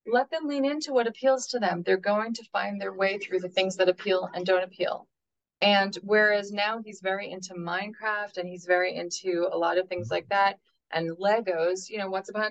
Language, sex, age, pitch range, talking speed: English, female, 30-49, 180-235 Hz, 215 wpm